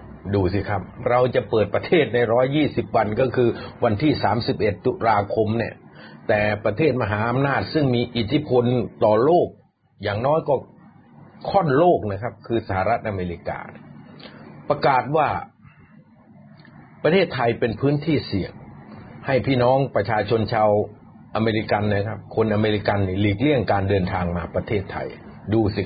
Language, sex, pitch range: Thai, male, 100-130 Hz